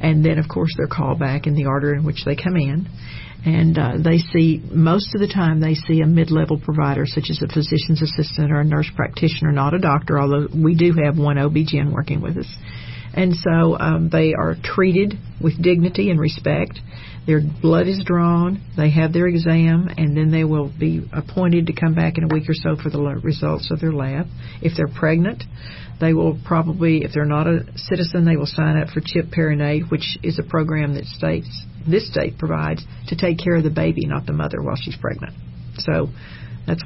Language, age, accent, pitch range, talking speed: English, 50-69, American, 145-165 Hz, 210 wpm